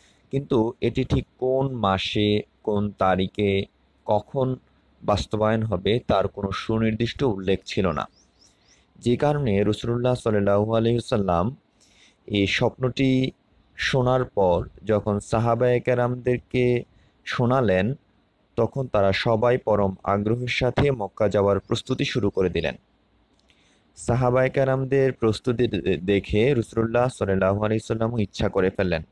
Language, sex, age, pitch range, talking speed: English, male, 30-49, 100-125 Hz, 90 wpm